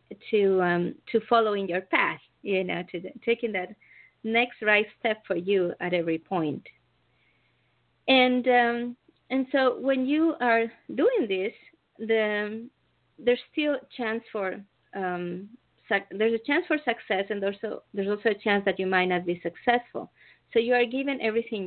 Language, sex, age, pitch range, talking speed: English, female, 30-49, 190-245 Hz, 165 wpm